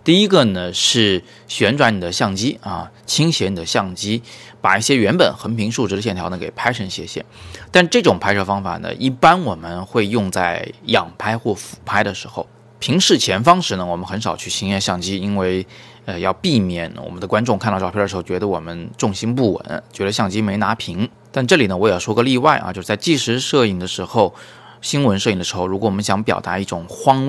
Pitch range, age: 95-120 Hz, 20-39